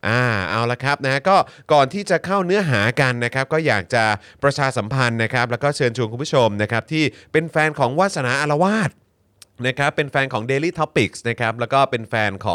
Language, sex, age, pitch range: Thai, male, 30-49, 100-135 Hz